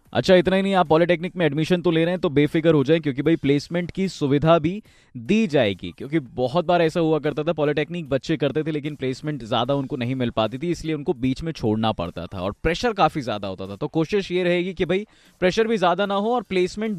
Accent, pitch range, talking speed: native, 130-170 Hz, 245 wpm